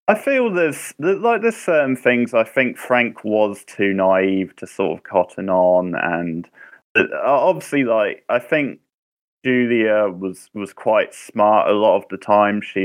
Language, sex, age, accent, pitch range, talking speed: English, male, 20-39, British, 90-105 Hz, 160 wpm